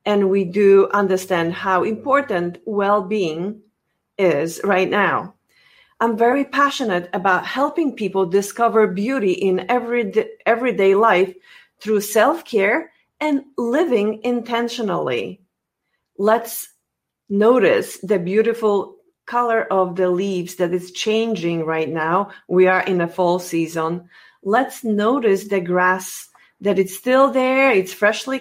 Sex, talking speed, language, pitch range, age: female, 120 wpm, English, 185-230 Hz, 40-59